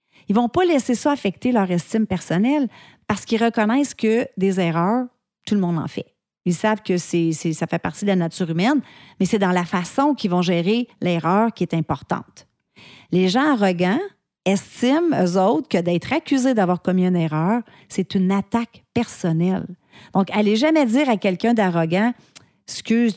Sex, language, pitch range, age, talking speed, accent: female, French, 180-235 Hz, 40-59, 185 wpm, Canadian